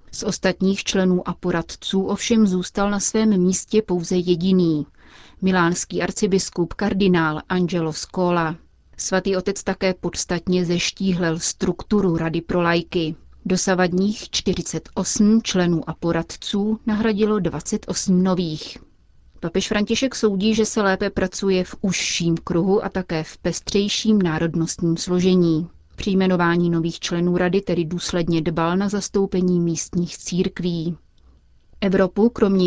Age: 30-49